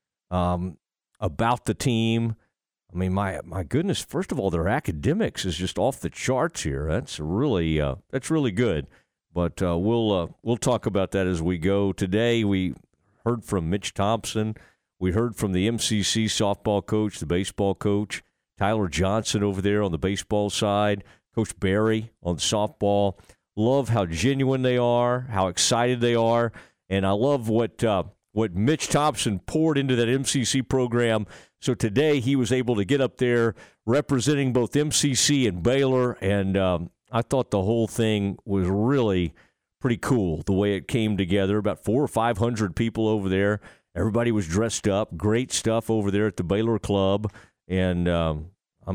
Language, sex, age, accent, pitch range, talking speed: English, male, 50-69, American, 95-120 Hz, 170 wpm